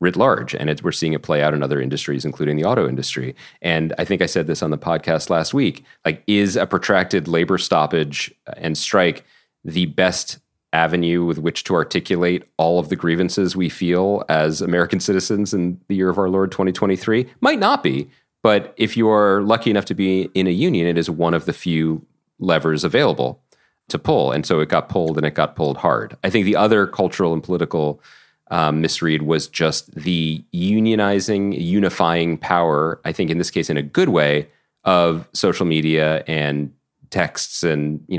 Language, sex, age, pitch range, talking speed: English, male, 40-59, 80-95 Hz, 190 wpm